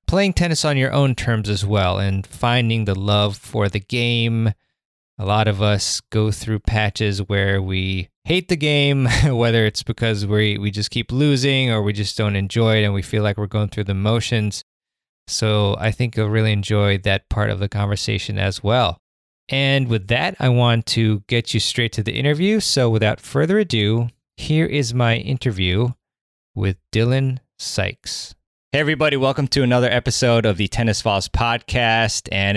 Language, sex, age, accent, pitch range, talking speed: English, male, 20-39, American, 100-125 Hz, 180 wpm